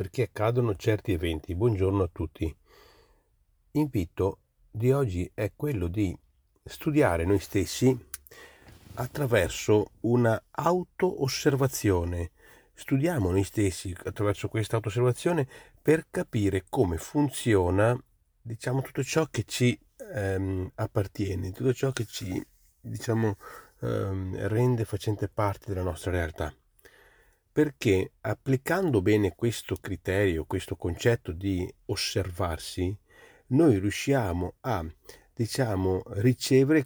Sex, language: male, Italian